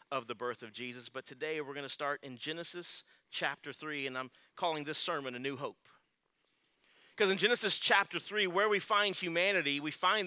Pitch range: 165-220 Hz